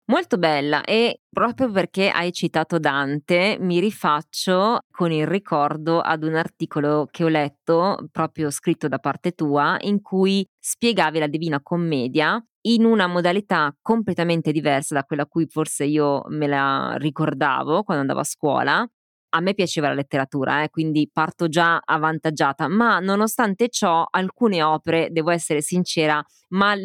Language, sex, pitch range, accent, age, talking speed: Italian, female, 155-205 Hz, native, 20-39, 150 wpm